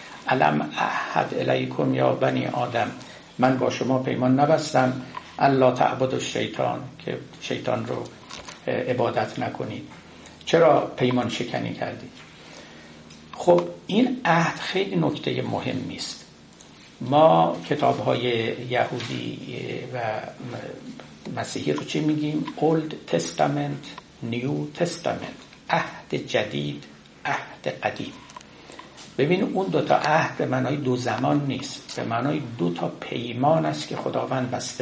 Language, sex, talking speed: Persian, male, 90 wpm